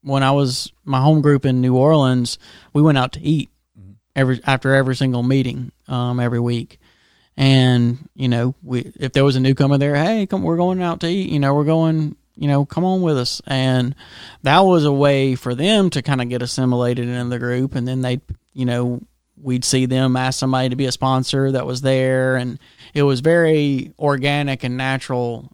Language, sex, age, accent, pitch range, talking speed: English, male, 30-49, American, 125-145 Hz, 205 wpm